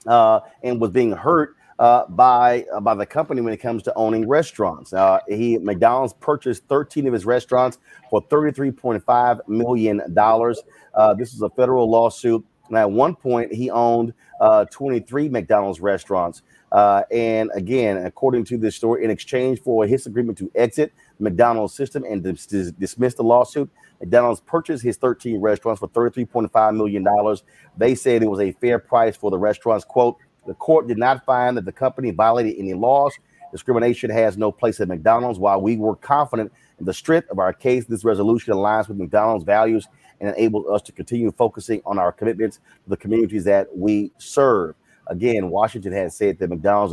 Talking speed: 175 wpm